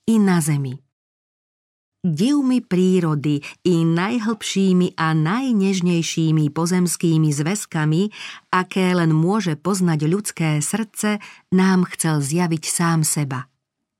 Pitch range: 155-200 Hz